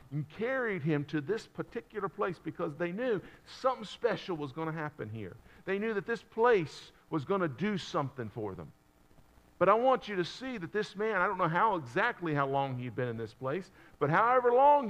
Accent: American